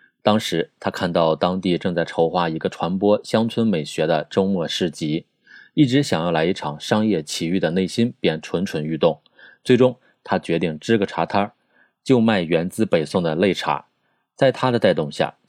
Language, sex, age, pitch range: Chinese, male, 30-49, 90-115 Hz